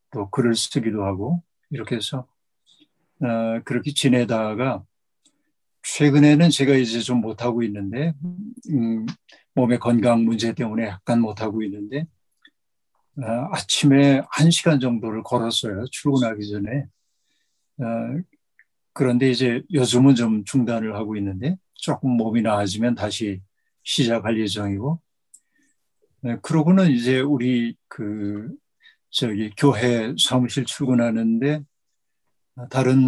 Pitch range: 115-140 Hz